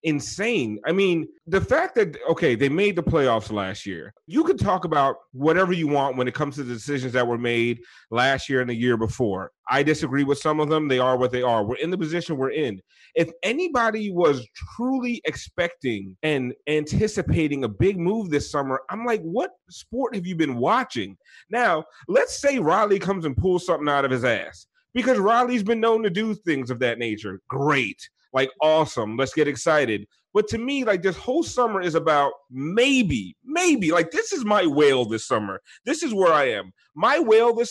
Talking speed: 200 wpm